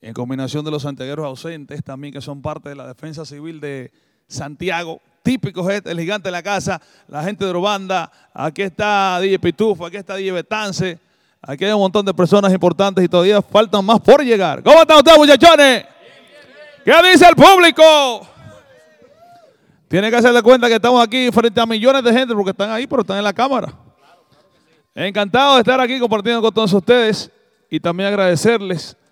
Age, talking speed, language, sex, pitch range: 30-49, 175 wpm, Spanish, male, 165-230 Hz